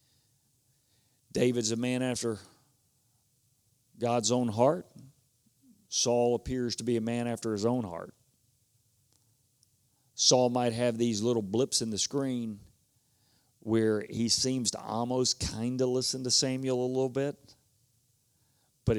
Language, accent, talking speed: English, American, 125 wpm